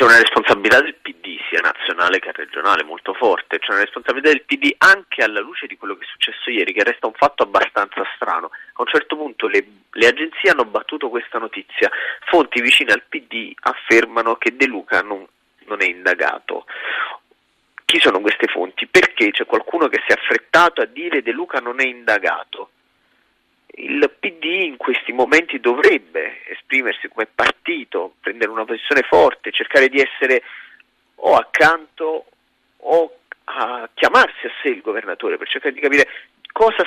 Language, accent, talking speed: Italian, native, 165 wpm